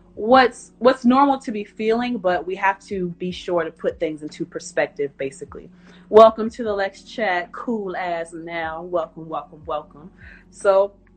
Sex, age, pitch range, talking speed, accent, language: female, 30-49, 160-195 Hz, 160 wpm, American, English